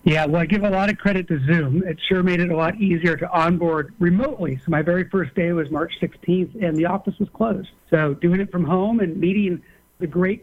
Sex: male